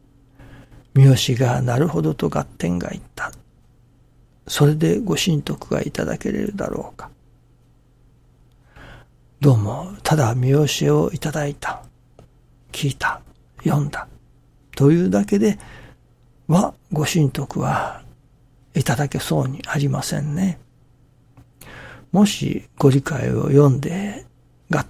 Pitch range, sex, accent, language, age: 125-155 Hz, male, native, Japanese, 60-79